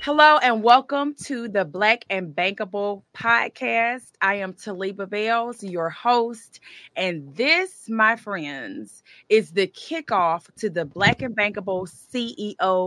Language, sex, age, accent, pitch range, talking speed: English, female, 30-49, American, 185-265 Hz, 130 wpm